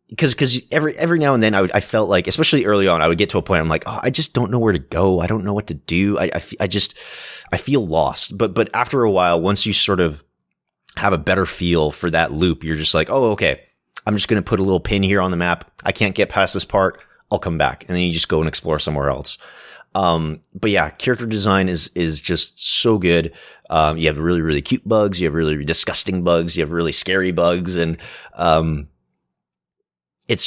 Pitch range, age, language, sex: 80-105 Hz, 30-49, English, male